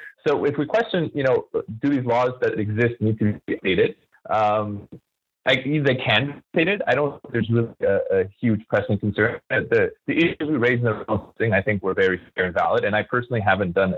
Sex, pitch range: male, 105-150 Hz